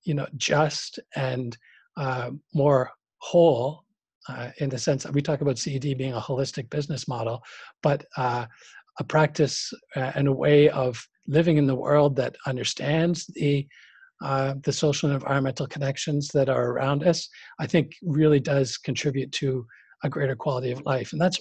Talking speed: 165 wpm